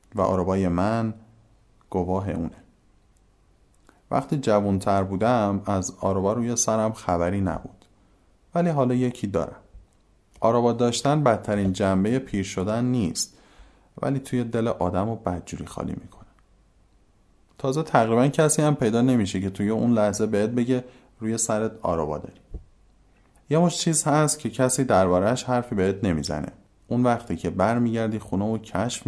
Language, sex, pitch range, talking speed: Persian, male, 95-115 Hz, 140 wpm